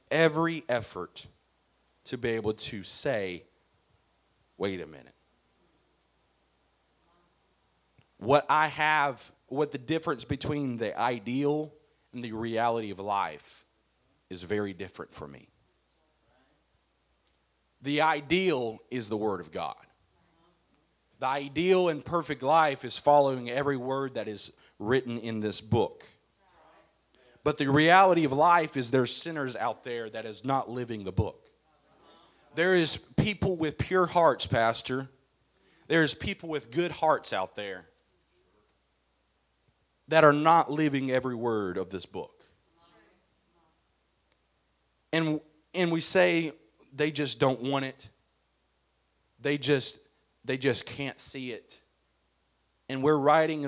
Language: English